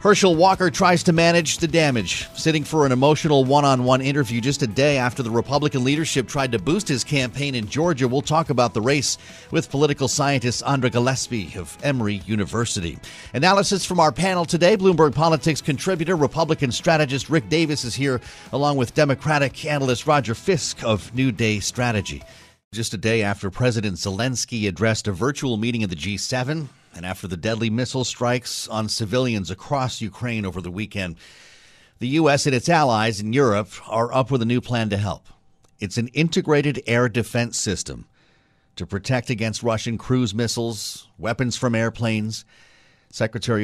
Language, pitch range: English, 110-145 Hz